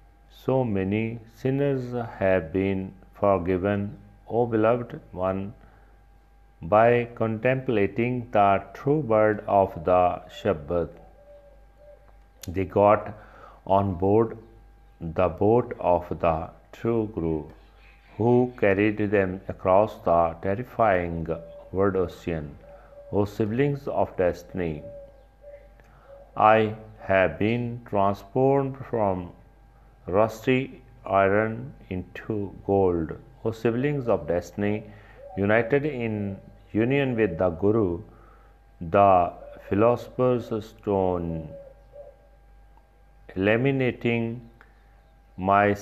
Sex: male